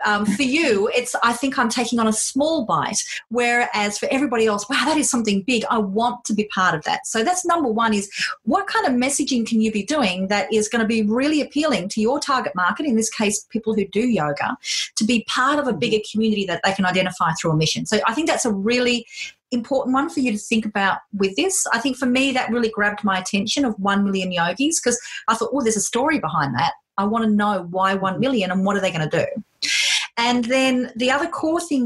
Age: 30-49